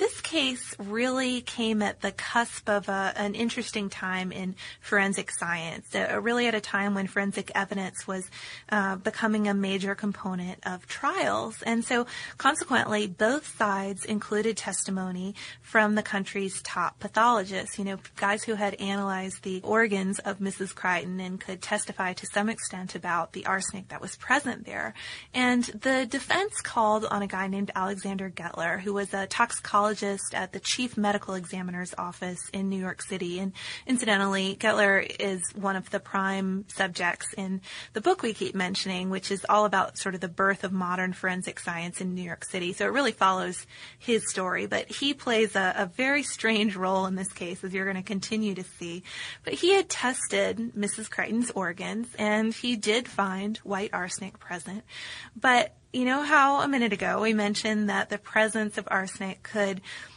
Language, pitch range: English, 190-220 Hz